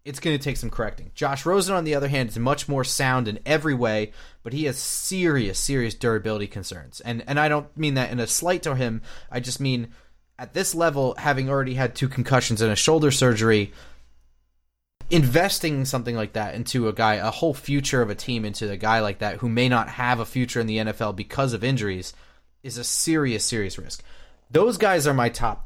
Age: 30-49